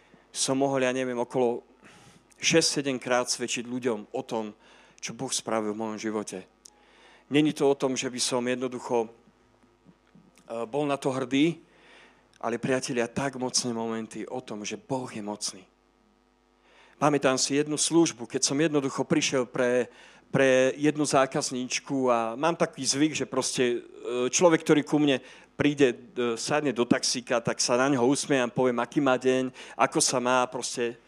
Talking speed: 155 wpm